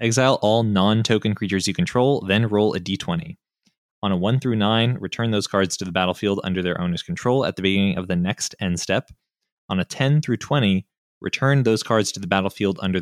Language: English